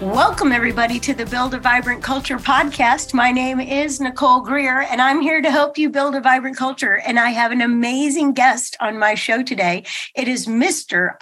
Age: 50-69